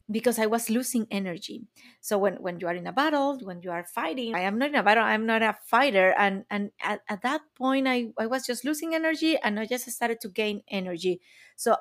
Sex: female